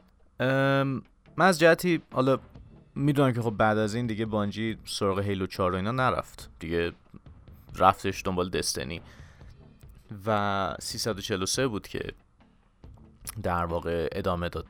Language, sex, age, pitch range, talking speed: Persian, male, 30-49, 95-130 Hz, 130 wpm